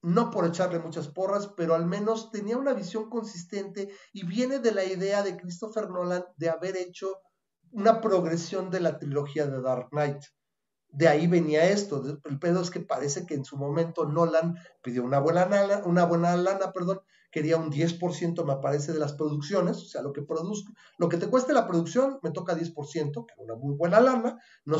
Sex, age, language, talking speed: male, 40-59, Spanish, 195 wpm